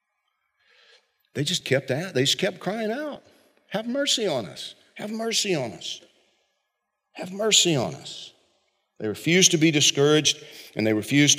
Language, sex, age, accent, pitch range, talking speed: English, male, 50-69, American, 100-130 Hz, 155 wpm